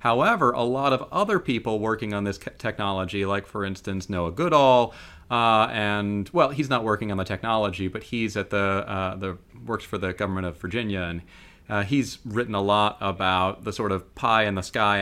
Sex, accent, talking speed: male, American, 200 wpm